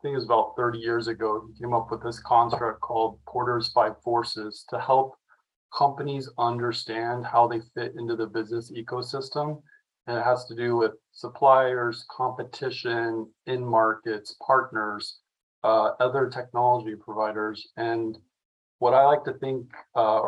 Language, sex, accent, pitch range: English, male, American, 110-125 Hz